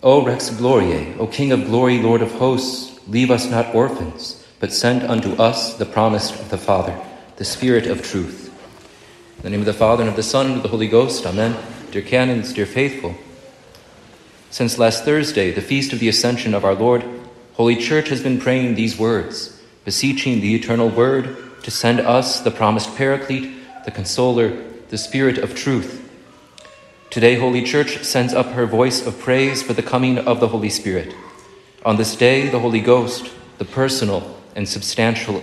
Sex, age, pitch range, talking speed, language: male, 40-59, 110-125 Hz, 180 wpm, English